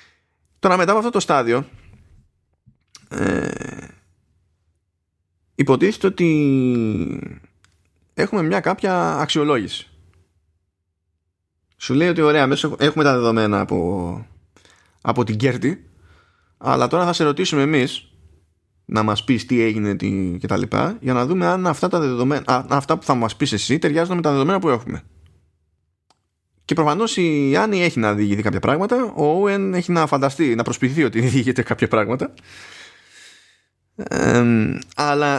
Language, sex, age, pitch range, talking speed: Greek, male, 20-39, 95-150 Hz, 135 wpm